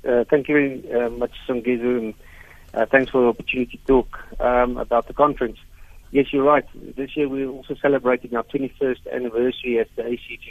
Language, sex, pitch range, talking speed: English, male, 110-125 Hz, 190 wpm